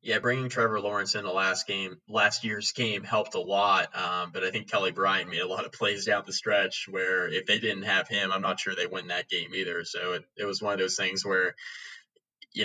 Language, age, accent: English, 20-39, American